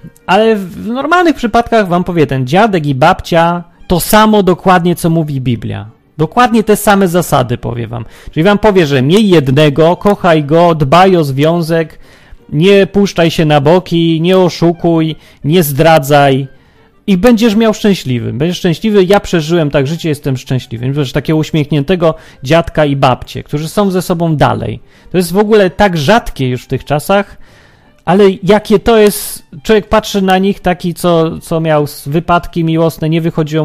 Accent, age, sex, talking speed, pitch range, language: native, 30-49, male, 160 wpm, 145-195 Hz, Polish